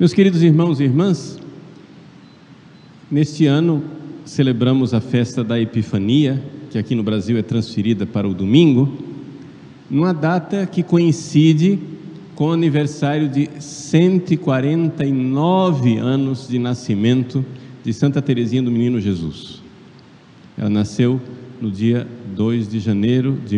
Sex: male